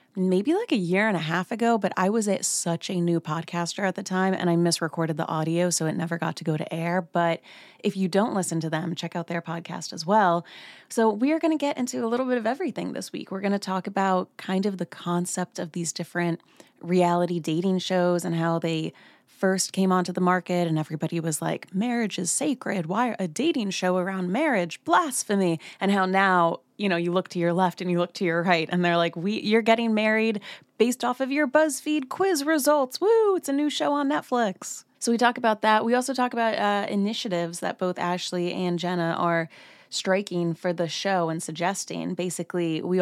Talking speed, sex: 220 wpm, female